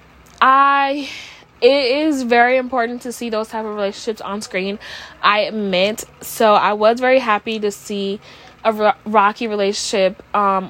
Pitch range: 210-255 Hz